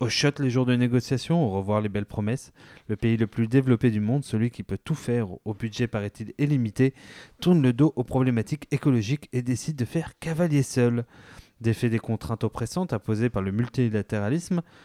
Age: 20-39